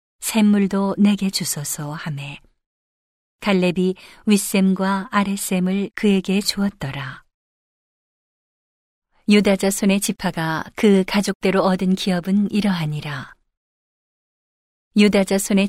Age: 40-59